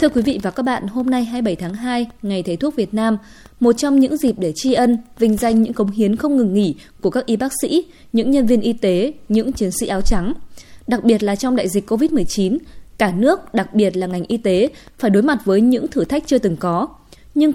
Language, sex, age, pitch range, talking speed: Vietnamese, female, 20-39, 200-265 Hz, 245 wpm